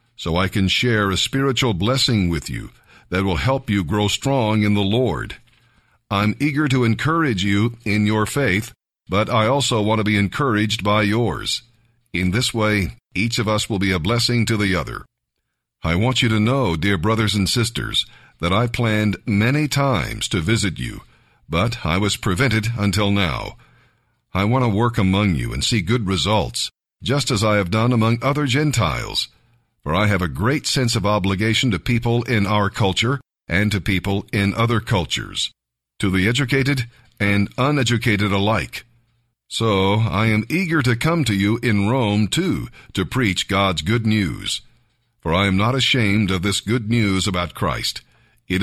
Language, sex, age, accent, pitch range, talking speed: English, male, 50-69, American, 100-120 Hz, 175 wpm